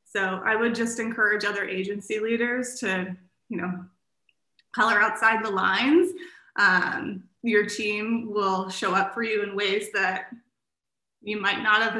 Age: 20-39